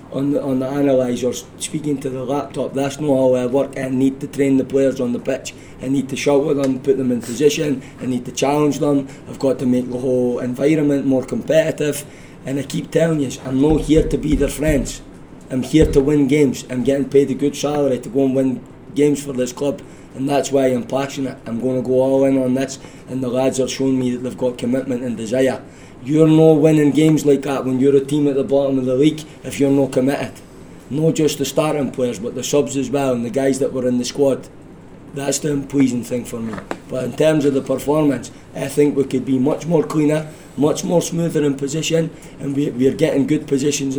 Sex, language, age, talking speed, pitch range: male, English, 20-39, 230 wpm, 130-145 Hz